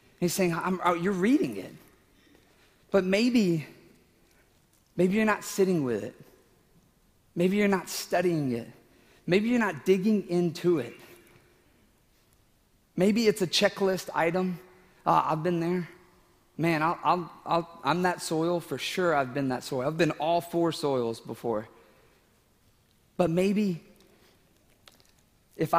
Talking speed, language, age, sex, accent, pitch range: 120 wpm, English, 40-59, male, American, 150-185 Hz